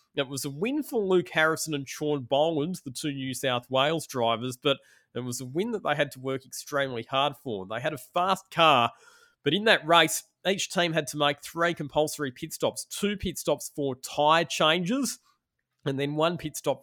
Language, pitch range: English, 130-160 Hz